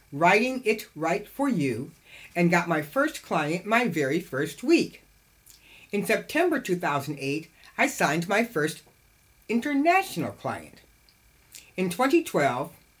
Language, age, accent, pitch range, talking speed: English, 60-79, American, 155-230 Hz, 115 wpm